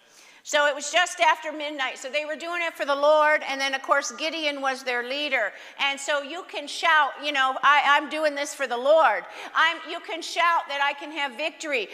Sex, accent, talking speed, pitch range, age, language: female, American, 225 wpm, 265-315 Hz, 50-69, English